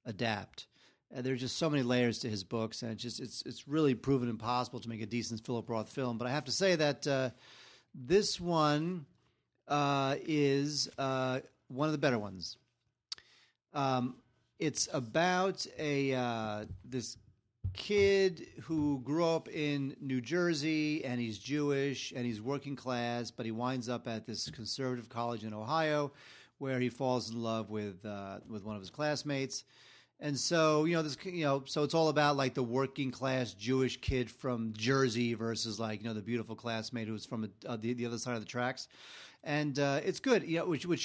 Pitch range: 120-145 Hz